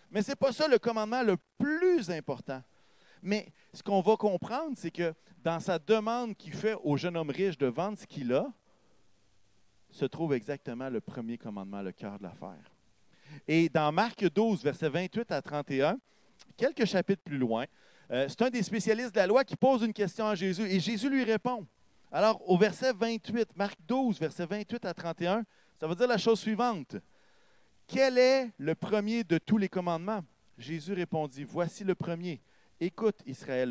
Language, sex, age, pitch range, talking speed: French, male, 40-59, 150-220 Hz, 180 wpm